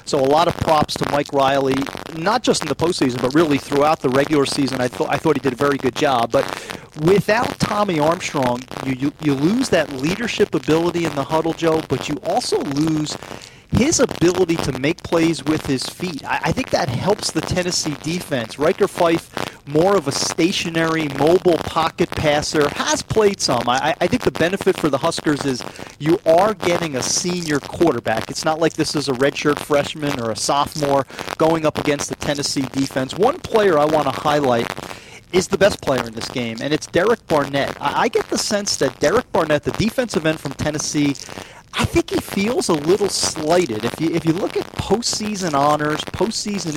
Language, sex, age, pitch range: English, male, 40-59, 135-170 Hz